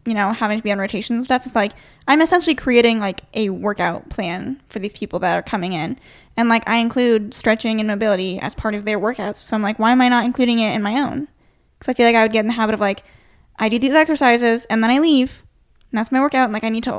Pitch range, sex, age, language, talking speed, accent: 215-255 Hz, female, 10-29, English, 280 wpm, American